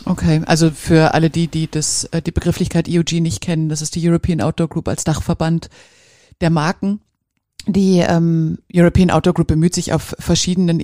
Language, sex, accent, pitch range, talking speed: German, female, German, 165-185 Hz, 170 wpm